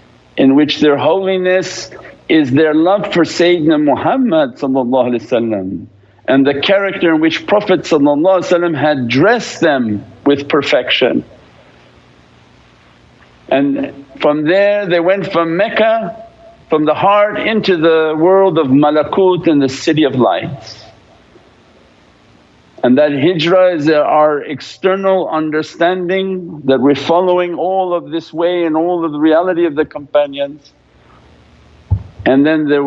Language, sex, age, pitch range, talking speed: English, male, 50-69, 130-170 Hz, 120 wpm